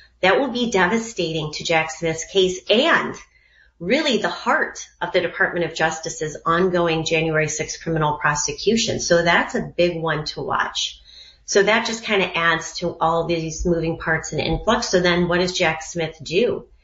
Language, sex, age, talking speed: English, female, 30-49, 175 wpm